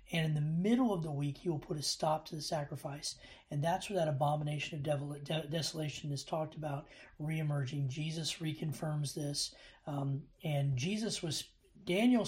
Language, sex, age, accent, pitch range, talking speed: English, male, 40-59, American, 145-175 Hz, 165 wpm